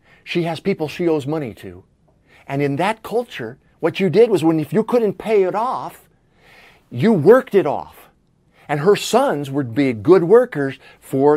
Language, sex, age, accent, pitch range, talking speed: English, male, 50-69, American, 150-215 Hz, 180 wpm